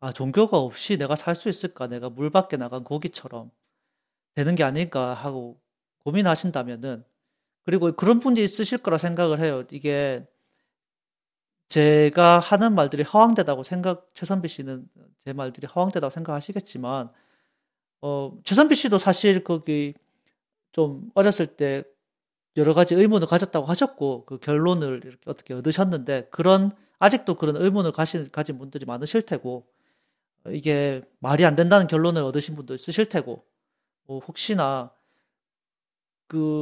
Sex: male